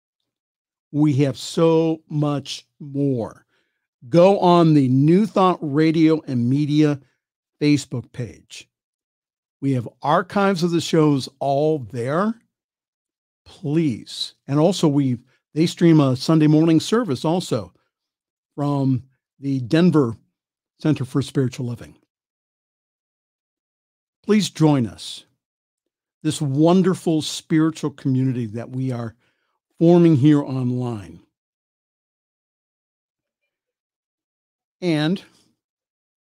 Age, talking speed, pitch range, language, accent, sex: 50-69, 90 wpm, 125-160 Hz, English, American, male